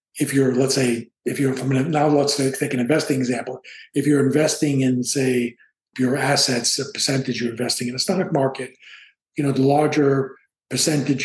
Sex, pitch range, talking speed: male, 125-150 Hz, 175 wpm